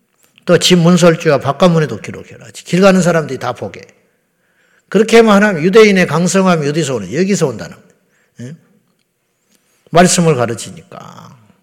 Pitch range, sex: 140-190 Hz, male